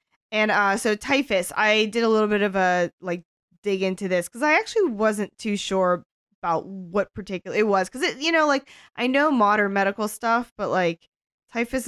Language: English